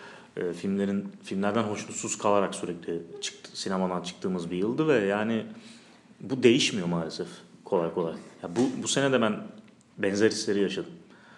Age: 30-49